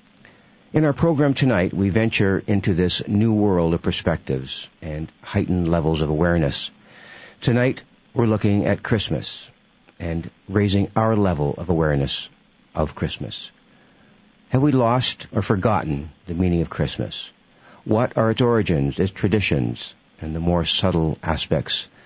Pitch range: 90-120 Hz